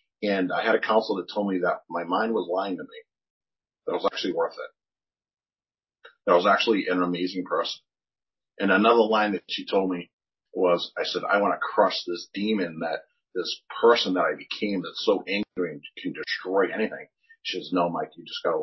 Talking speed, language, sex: 205 wpm, English, male